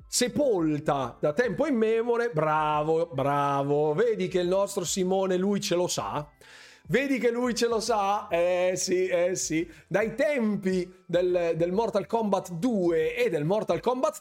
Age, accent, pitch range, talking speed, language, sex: 30-49, native, 160-230 Hz, 150 wpm, Italian, male